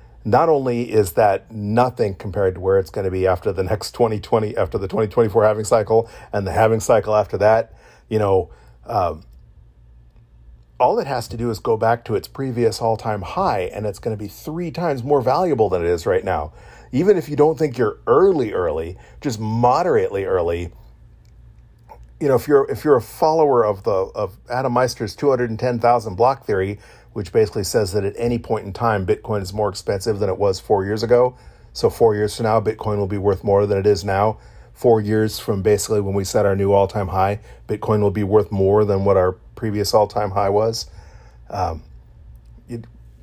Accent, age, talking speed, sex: American, 40-59, 195 wpm, male